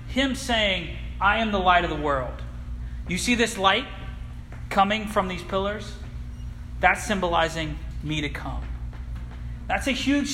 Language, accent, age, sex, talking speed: English, American, 40-59, male, 145 wpm